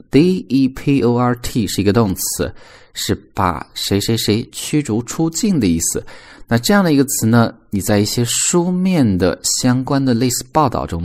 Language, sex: Chinese, male